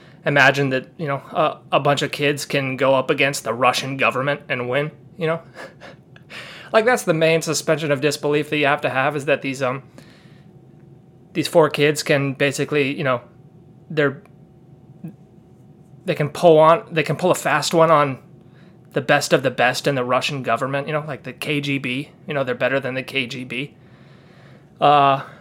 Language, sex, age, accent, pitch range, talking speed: English, male, 20-39, American, 140-165 Hz, 180 wpm